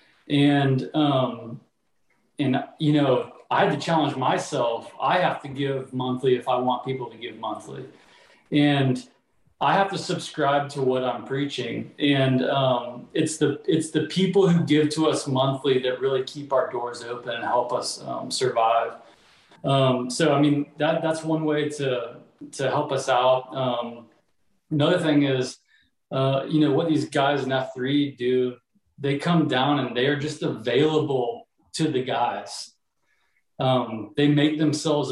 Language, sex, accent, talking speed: English, male, American, 160 wpm